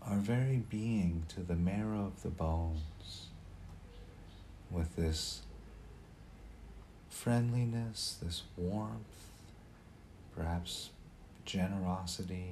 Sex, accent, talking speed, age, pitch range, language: male, American, 75 wpm, 40-59, 80-100 Hz, English